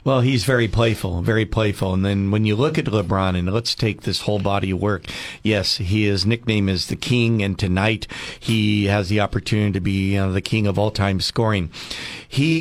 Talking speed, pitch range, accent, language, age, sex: 205 wpm, 100-115 Hz, American, English, 50-69, male